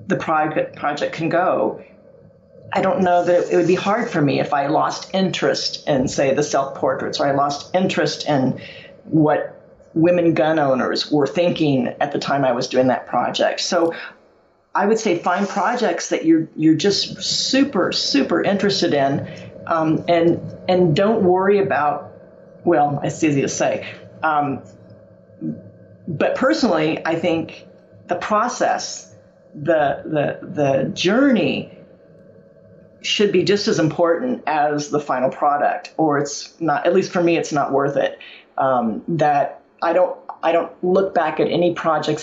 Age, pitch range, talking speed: 40-59, 150-180 Hz, 155 wpm